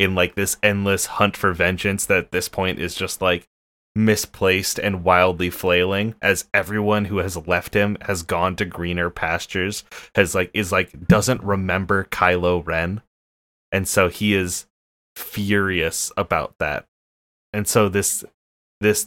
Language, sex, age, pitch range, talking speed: English, male, 20-39, 90-105 Hz, 150 wpm